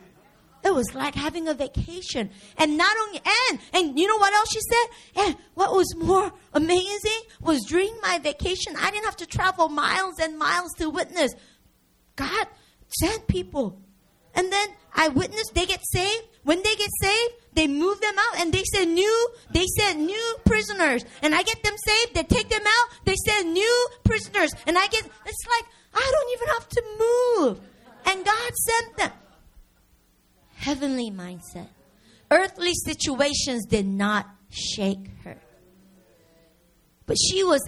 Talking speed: 160 wpm